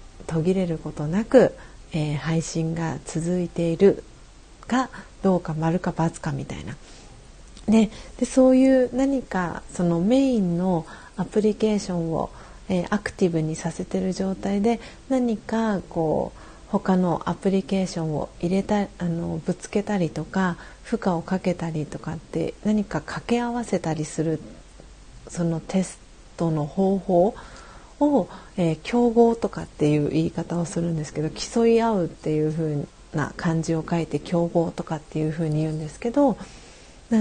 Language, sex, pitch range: Japanese, female, 165-210 Hz